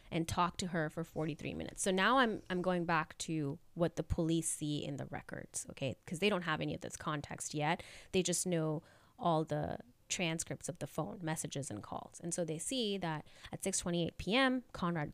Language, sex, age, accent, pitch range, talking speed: English, female, 20-39, American, 150-180 Hz, 205 wpm